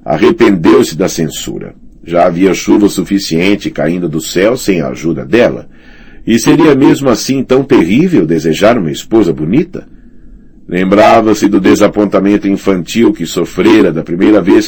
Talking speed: 135 wpm